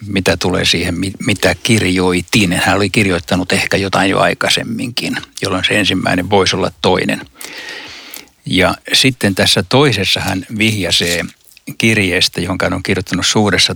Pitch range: 95-105 Hz